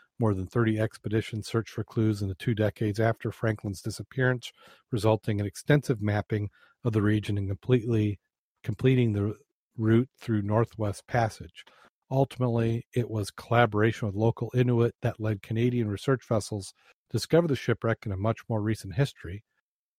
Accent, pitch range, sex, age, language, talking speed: American, 105-125 Hz, male, 40-59, English, 155 wpm